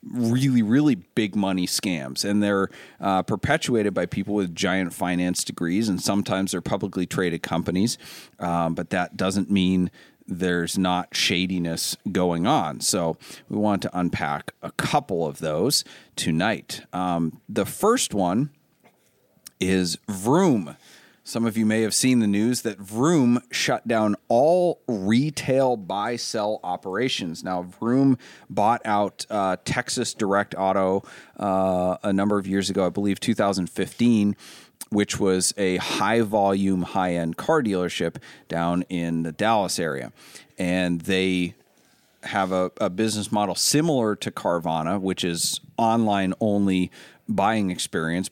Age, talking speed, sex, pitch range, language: 30-49, 135 wpm, male, 90-110 Hz, English